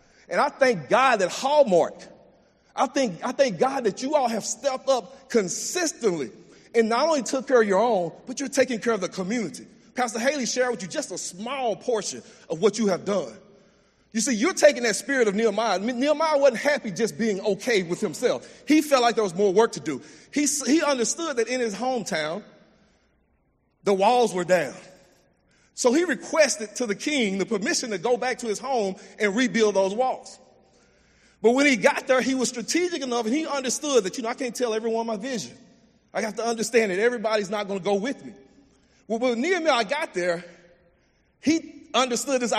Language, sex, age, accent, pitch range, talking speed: English, male, 40-59, American, 215-265 Hz, 205 wpm